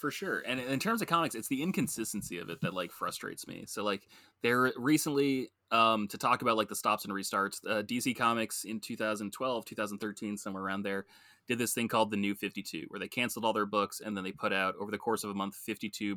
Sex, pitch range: male, 100-115 Hz